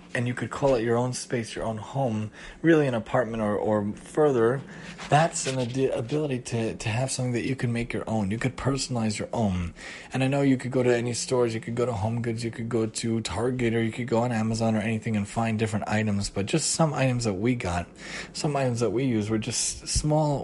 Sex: male